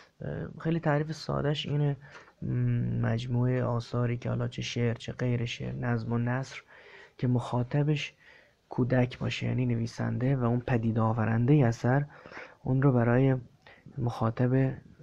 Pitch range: 115-135 Hz